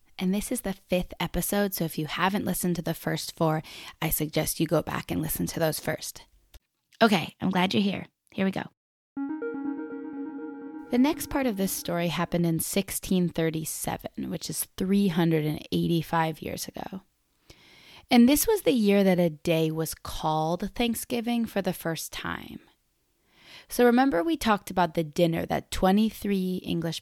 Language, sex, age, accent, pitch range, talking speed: English, female, 20-39, American, 160-210 Hz, 160 wpm